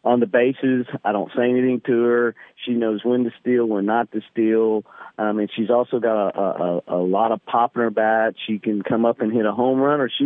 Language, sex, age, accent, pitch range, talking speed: English, male, 50-69, American, 105-120 Hz, 250 wpm